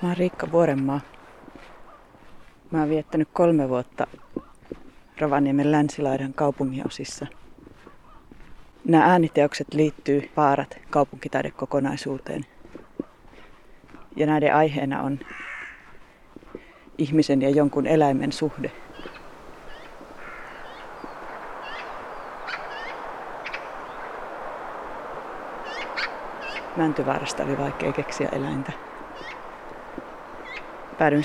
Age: 30-49